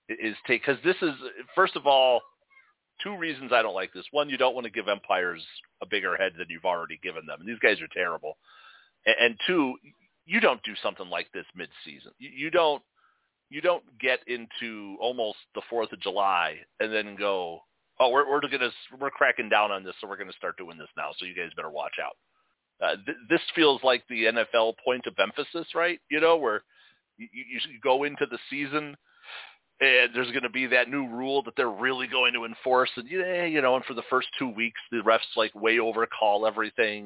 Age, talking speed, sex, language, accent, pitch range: 40-59, 210 wpm, male, English, American, 110-145 Hz